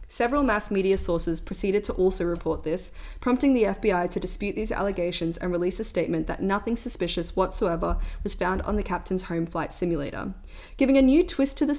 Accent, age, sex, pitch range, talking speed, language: Australian, 20-39, female, 175-210 Hz, 195 wpm, English